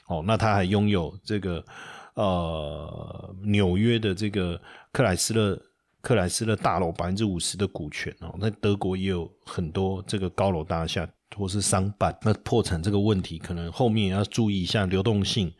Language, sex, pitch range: Chinese, male, 90-115 Hz